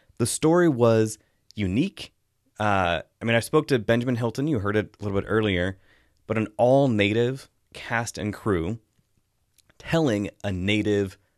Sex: male